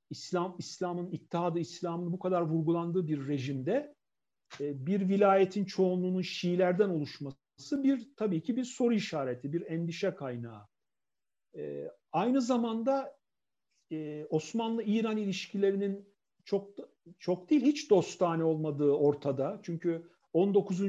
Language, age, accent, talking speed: Turkish, 50-69, native, 105 wpm